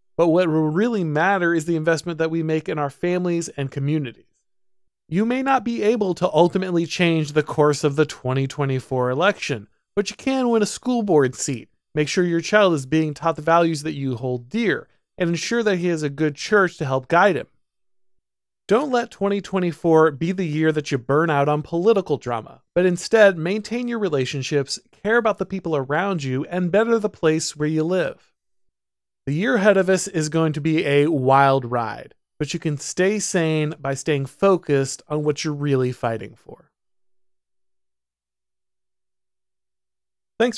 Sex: male